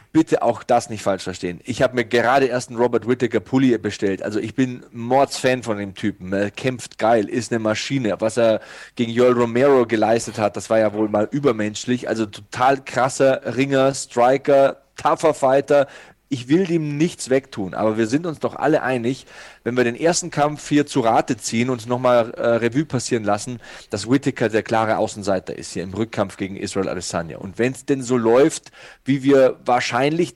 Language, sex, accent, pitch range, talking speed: German, male, German, 115-155 Hz, 190 wpm